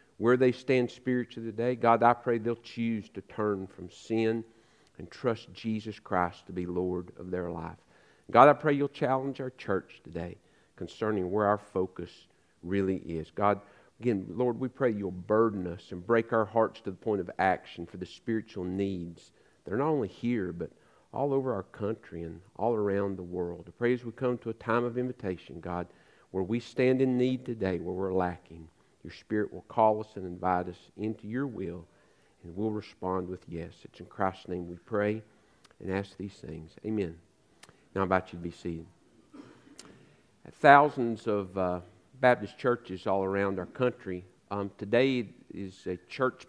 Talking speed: 185 wpm